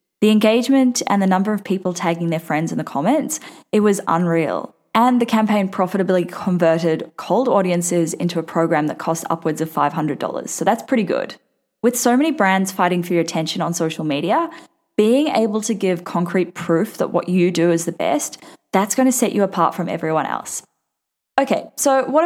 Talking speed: 190 wpm